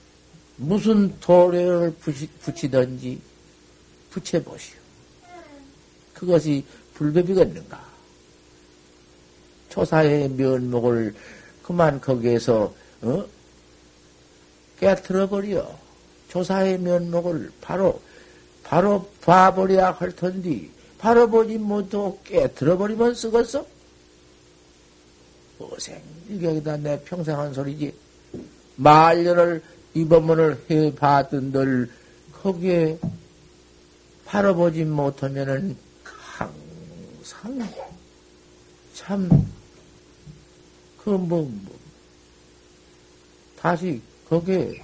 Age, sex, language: 60-79, male, Korean